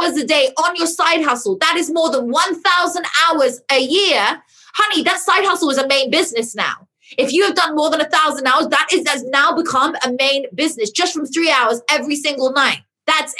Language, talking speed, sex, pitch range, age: English, 210 wpm, female, 260-330 Hz, 20-39